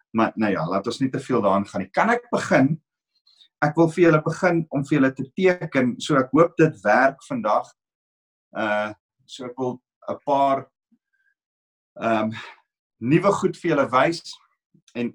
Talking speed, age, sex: 160 wpm, 50-69, male